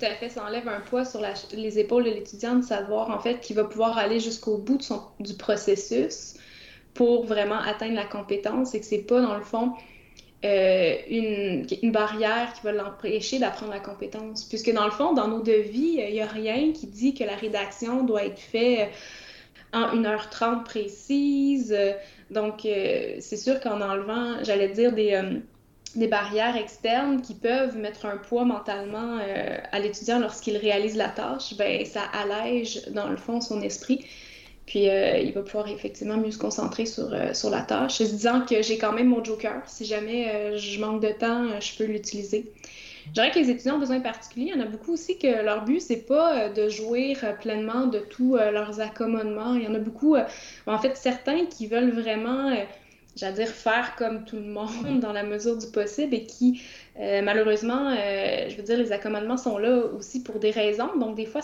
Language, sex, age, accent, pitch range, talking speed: French, female, 20-39, Canadian, 210-245 Hz, 205 wpm